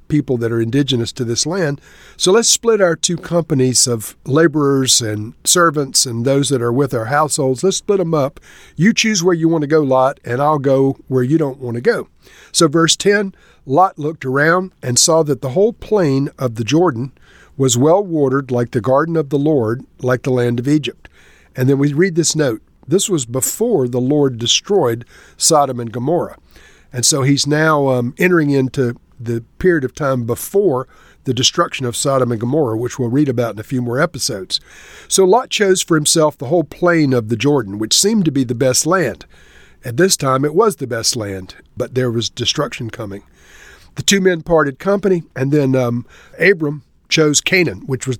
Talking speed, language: 200 wpm, English